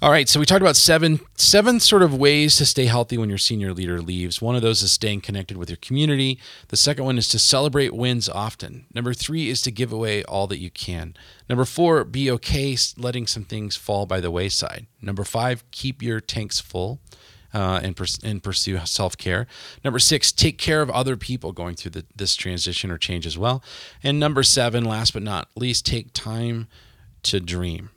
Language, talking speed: English, 205 wpm